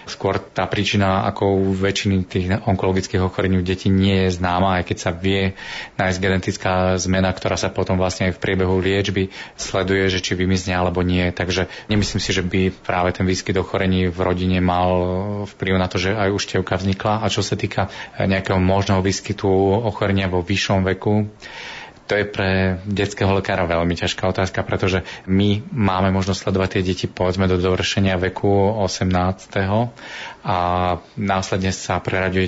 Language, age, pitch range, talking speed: Slovak, 30-49, 95-100 Hz, 165 wpm